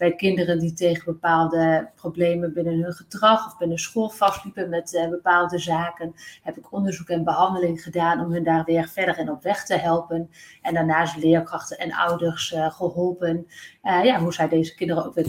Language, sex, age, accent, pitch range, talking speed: Dutch, female, 30-49, Dutch, 165-185 Hz, 180 wpm